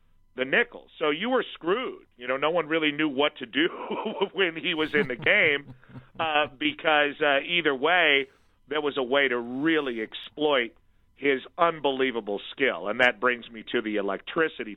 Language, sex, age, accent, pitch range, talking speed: English, male, 50-69, American, 100-130 Hz, 175 wpm